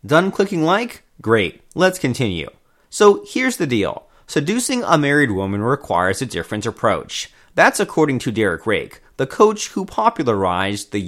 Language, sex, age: English, male, 30-49